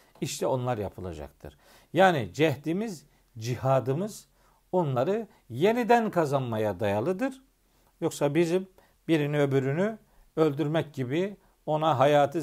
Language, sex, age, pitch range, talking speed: Turkish, male, 50-69, 130-180 Hz, 85 wpm